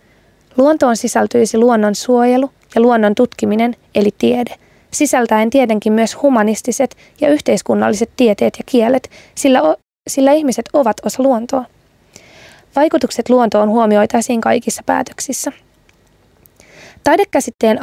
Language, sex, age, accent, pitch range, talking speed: Finnish, female, 20-39, native, 225-265 Hz, 105 wpm